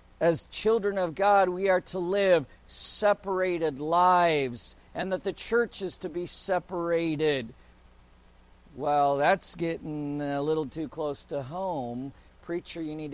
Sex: male